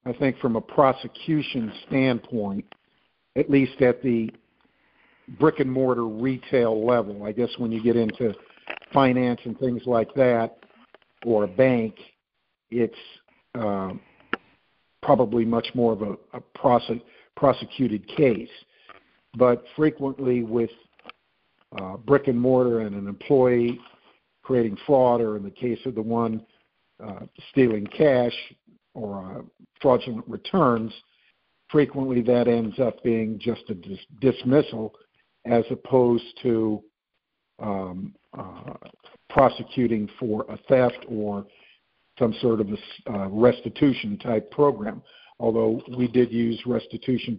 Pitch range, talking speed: 110-130 Hz, 120 wpm